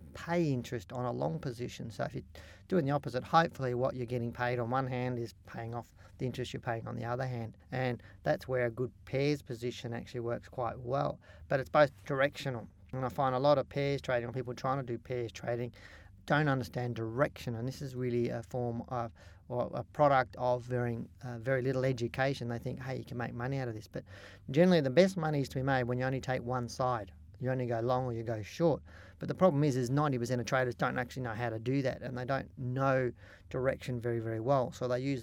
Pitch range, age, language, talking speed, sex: 115-130 Hz, 40-59, English, 235 wpm, male